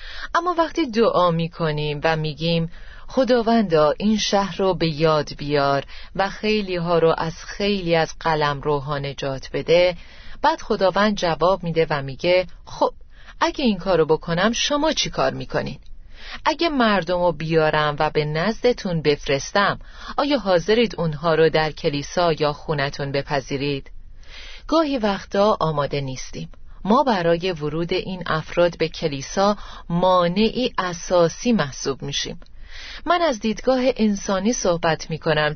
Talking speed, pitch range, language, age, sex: 130 wpm, 155-225 Hz, Persian, 30-49, female